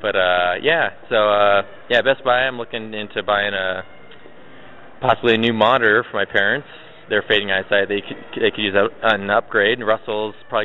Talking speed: 190 wpm